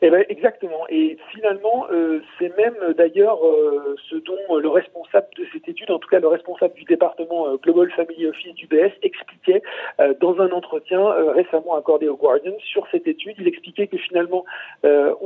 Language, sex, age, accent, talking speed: French, male, 50-69, French, 190 wpm